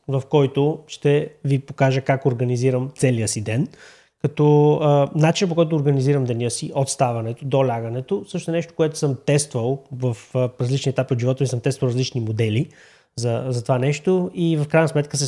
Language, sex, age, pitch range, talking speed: Bulgarian, male, 20-39, 120-145 Hz, 175 wpm